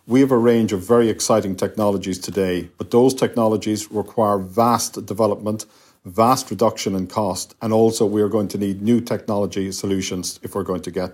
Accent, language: Irish, English